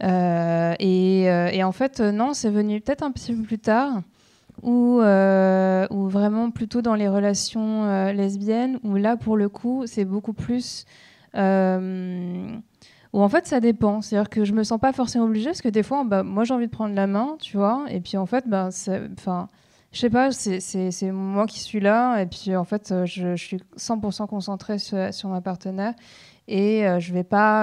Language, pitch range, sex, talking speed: French, 190-230 Hz, female, 200 wpm